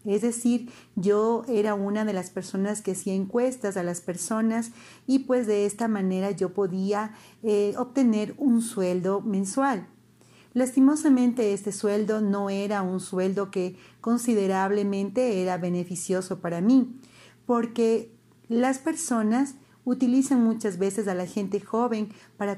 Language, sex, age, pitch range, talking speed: Spanish, female, 40-59, 190-230 Hz, 135 wpm